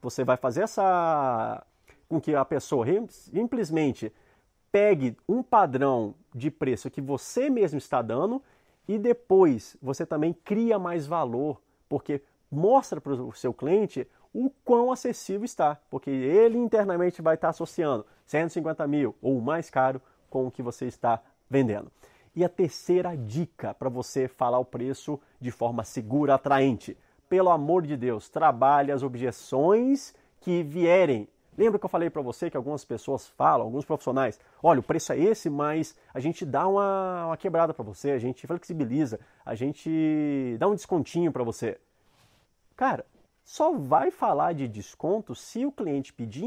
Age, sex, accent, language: 30-49, male, Brazilian, Portuguese